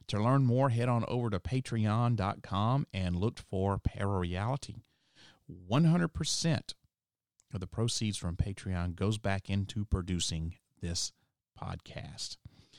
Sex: male